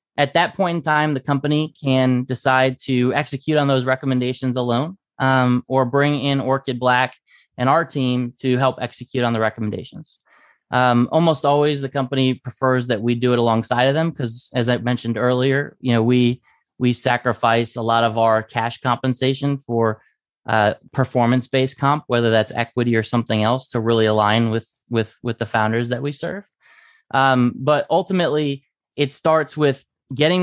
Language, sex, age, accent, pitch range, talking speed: English, male, 20-39, American, 125-145 Hz, 170 wpm